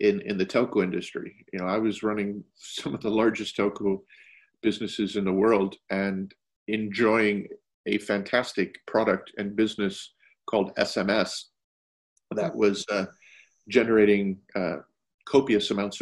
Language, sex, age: English, male, 50-69